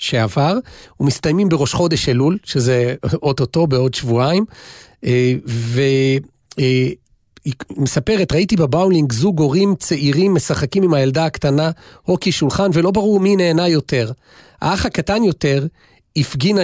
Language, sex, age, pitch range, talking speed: Hebrew, male, 40-59, 135-190 Hz, 110 wpm